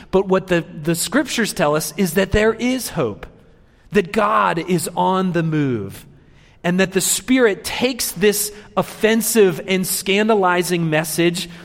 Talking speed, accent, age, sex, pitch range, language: 145 wpm, American, 40-59, male, 130-190 Hz, English